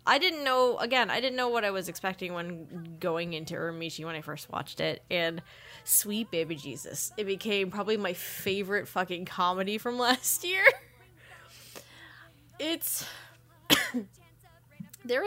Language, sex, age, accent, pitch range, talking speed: English, female, 10-29, American, 175-230 Hz, 140 wpm